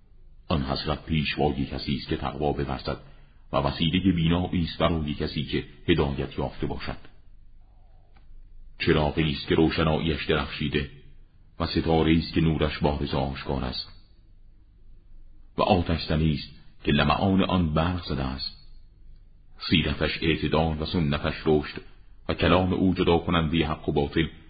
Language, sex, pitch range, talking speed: Persian, male, 75-90 Hz, 125 wpm